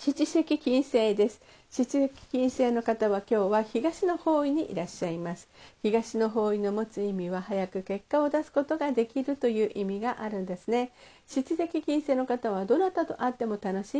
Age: 50-69